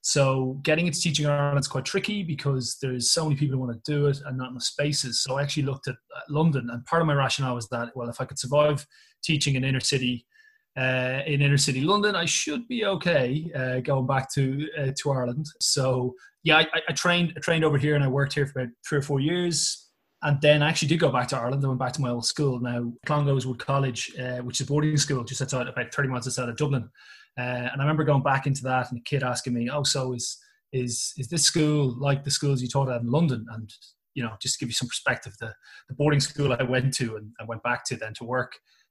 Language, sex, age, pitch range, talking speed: English, male, 20-39, 125-150 Hz, 260 wpm